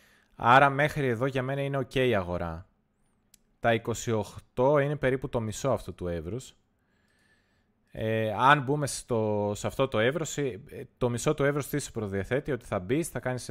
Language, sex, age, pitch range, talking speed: Greek, male, 20-39, 105-135 Hz, 155 wpm